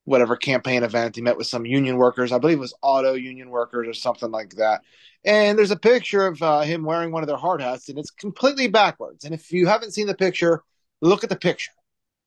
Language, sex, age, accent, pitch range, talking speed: English, male, 30-49, American, 145-215 Hz, 235 wpm